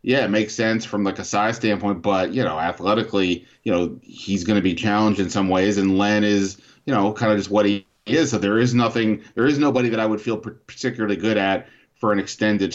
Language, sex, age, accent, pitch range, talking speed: English, male, 30-49, American, 100-120 Hz, 245 wpm